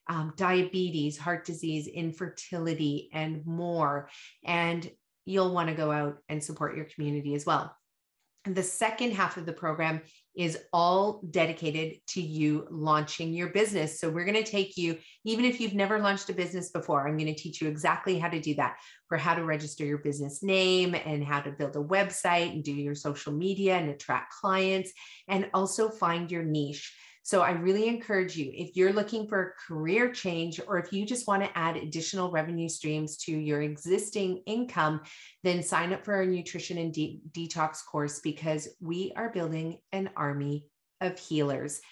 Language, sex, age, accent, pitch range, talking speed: English, female, 30-49, American, 155-185 Hz, 180 wpm